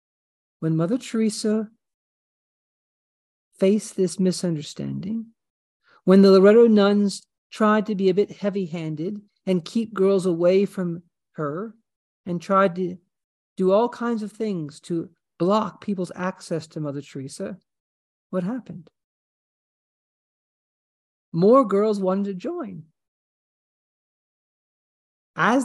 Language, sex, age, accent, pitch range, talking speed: English, male, 50-69, American, 180-230 Hz, 105 wpm